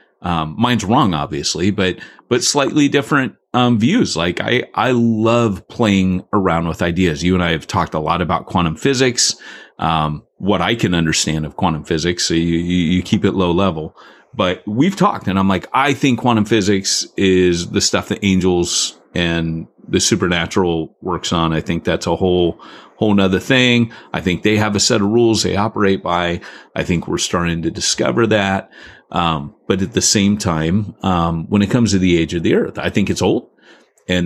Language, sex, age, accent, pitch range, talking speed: English, male, 30-49, American, 85-110 Hz, 195 wpm